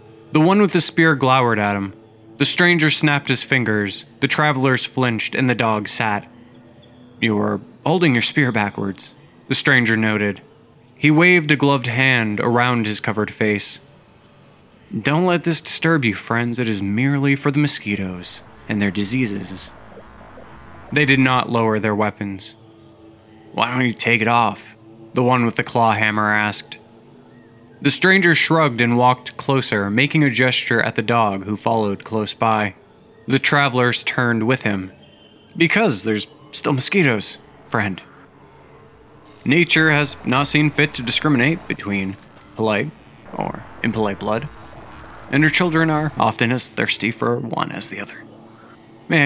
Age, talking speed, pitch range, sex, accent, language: 20-39, 150 wpm, 110-145 Hz, male, American, English